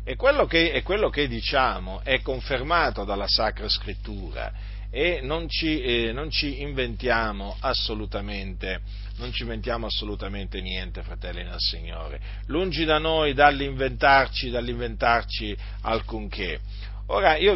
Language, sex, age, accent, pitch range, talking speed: Italian, male, 40-59, native, 100-130 Hz, 125 wpm